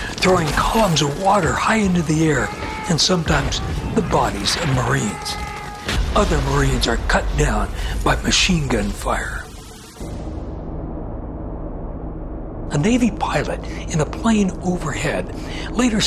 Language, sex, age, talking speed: English, male, 60-79, 115 wpm